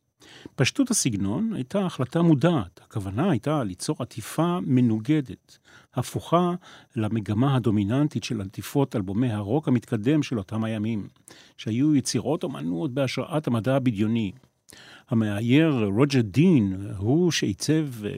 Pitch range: 115-155 Hz